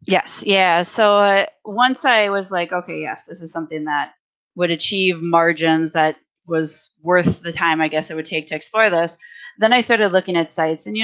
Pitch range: 165-200 Hz